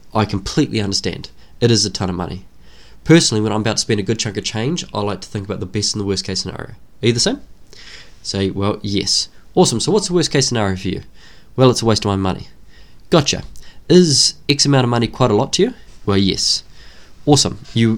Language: English